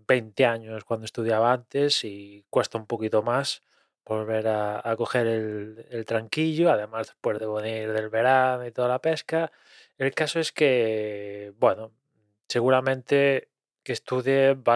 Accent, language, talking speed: Spanish, Spanish, 145 wpm